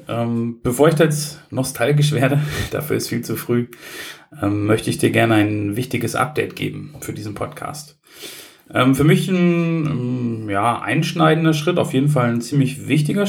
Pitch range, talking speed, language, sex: 115-150 Hz, 165 wpm, German, male